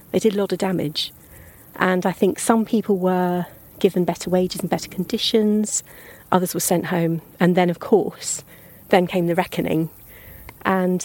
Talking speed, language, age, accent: 170 wpm, English, 40-59, British